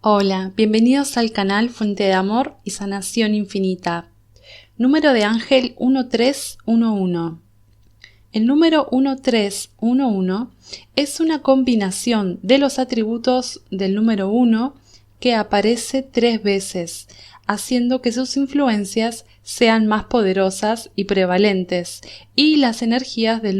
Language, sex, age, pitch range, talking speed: Spanish, female, 20-39, 190-255 Hz, 110 wpm